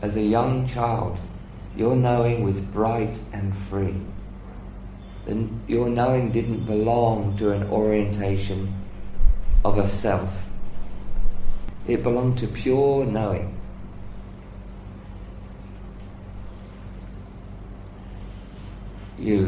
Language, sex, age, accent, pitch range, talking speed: English, male, 40-59, British, 95-110 Hz, 80 wpm